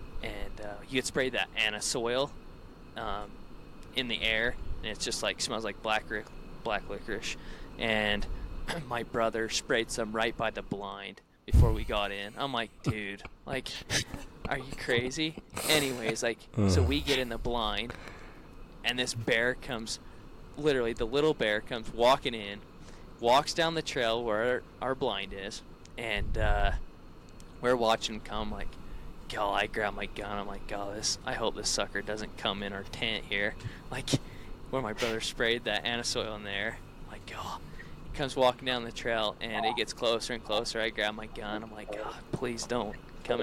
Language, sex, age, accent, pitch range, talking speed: English, male, 20-39, American, 100-120 Hz, 180 wpm